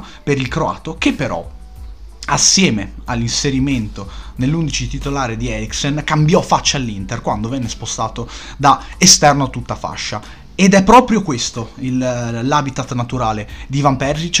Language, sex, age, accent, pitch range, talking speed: Italian, male, 30-49, native, 115-155 Hz, 135 wpm